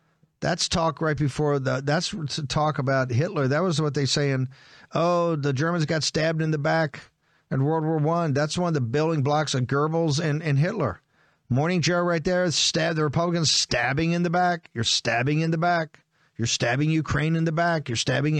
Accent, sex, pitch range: American, male, 125-155 Hz